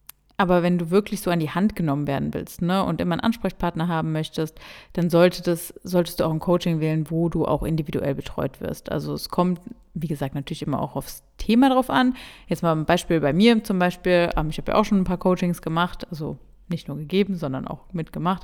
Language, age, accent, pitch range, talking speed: German, 30-49, German, 160-195 Hz, 225 wpm